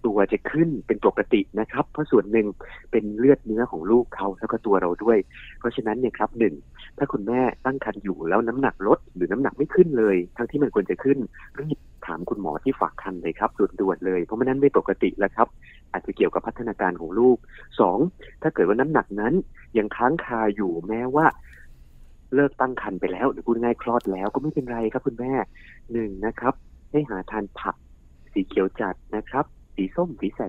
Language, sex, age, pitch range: Thai, male, 30-49, 95-135 Hz